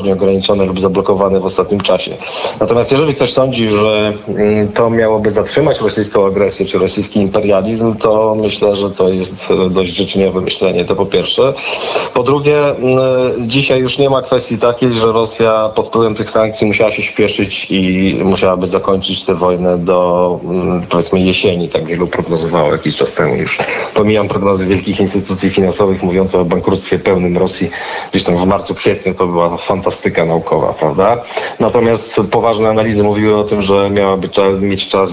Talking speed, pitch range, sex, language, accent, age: 160 wpm, 95-110 Hz, male, Polish, native, 40-59